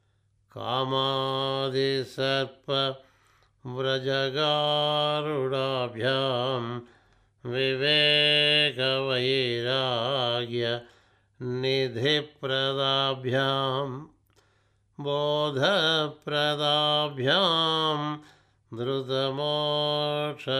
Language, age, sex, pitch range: Telugu, 60-79, male, 125-150 Hz